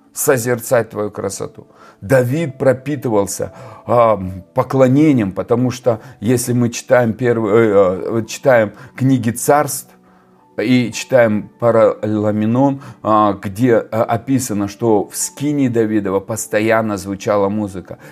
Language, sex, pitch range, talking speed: Russian, male, 105-130 Hz, 90 wpm